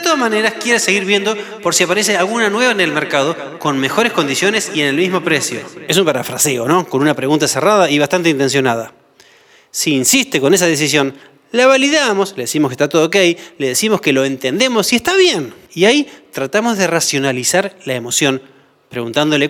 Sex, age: male, 20-39